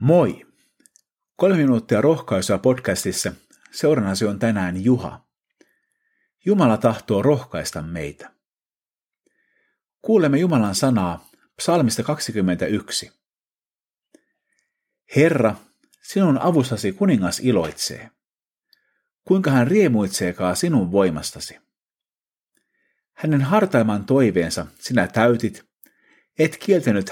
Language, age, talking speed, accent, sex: Finnish, 50-69, 75 wpm, native, male